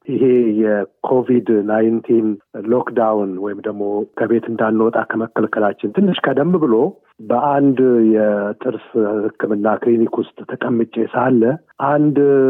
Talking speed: 80 wpm